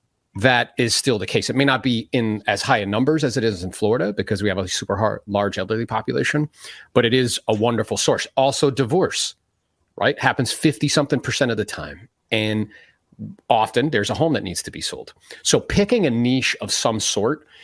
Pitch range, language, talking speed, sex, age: 110-145 Hz, English, 205 wpm, male, 30-49